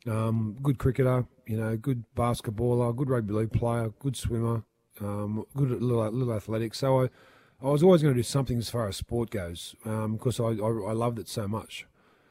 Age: 30-49